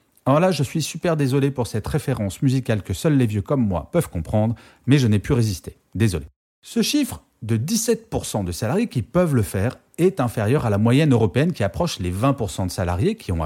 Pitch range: 100-170 Hz